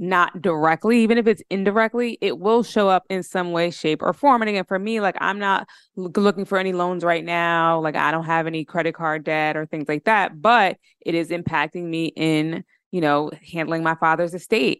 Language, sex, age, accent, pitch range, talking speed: English, female, 20-39, American, 155-185 Hz, 215 wpm